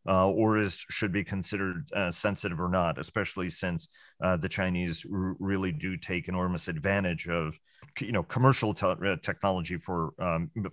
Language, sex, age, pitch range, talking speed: English, male, 40-59, 90-105 Hz, 160 wpm